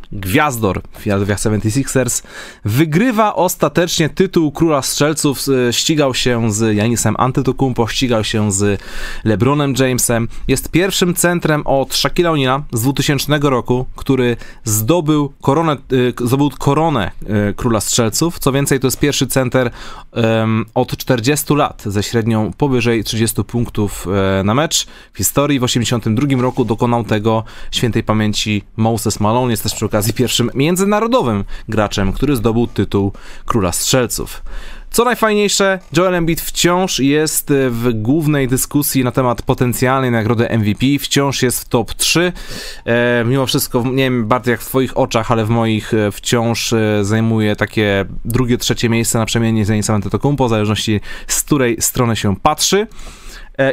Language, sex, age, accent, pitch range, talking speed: Polish, male, 20-39, native, 110-145 Hz, 135 wpm